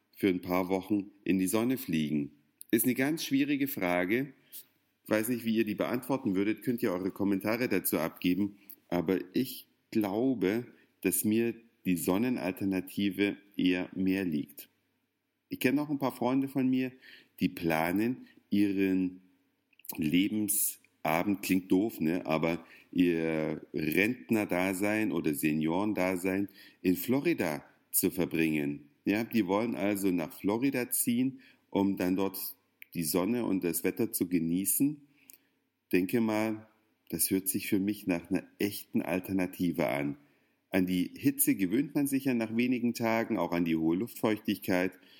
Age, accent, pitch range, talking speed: 50-69, German, 95-120 Hz, 140 wpm